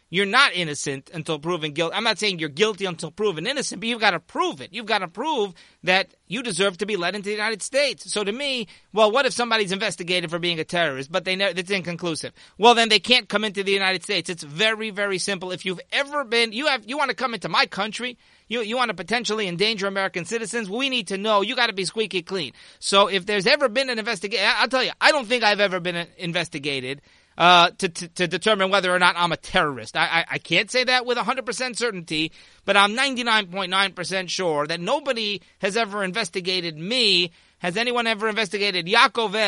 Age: 30-49